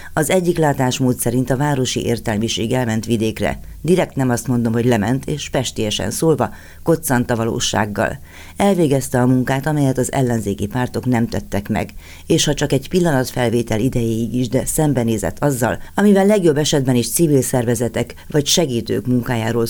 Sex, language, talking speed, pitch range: female, Hungarian, 150 wpm, 110-135 Hz